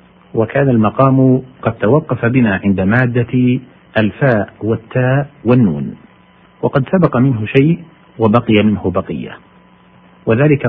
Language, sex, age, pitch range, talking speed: Arabic, male, 50-69, 105-125 Hz, 100 wpm